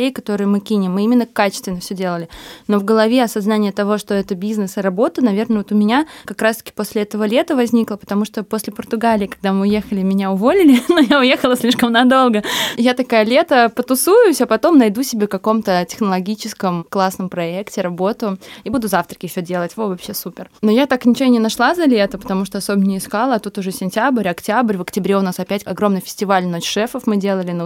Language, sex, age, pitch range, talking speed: Russian, female, 20-39, 185-220 Hz, 205 wpm